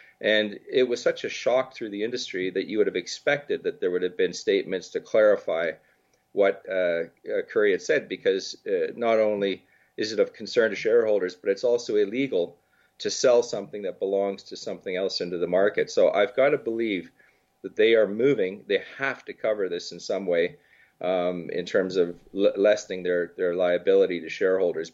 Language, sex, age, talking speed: English, male, 40-59, 190 wpm